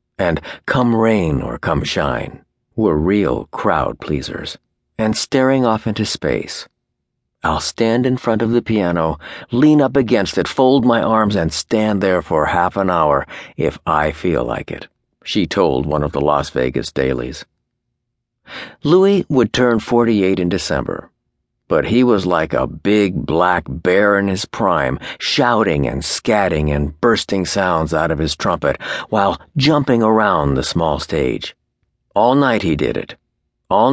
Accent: American